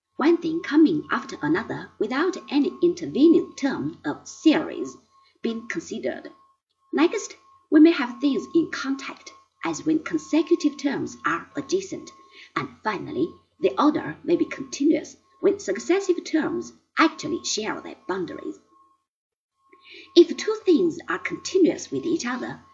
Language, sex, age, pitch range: Chinese, female, 50-69, 285-360 Hz